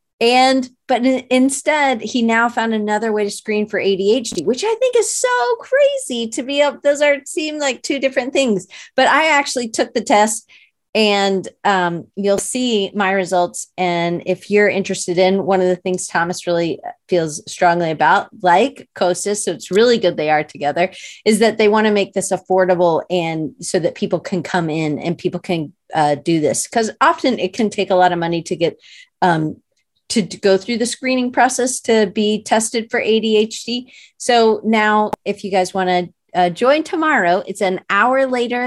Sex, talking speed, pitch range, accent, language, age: female, 190 wpm, 185-245 Hz, American, English, 30-49